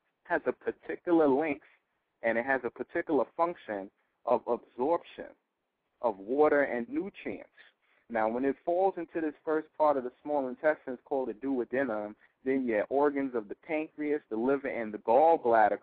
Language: English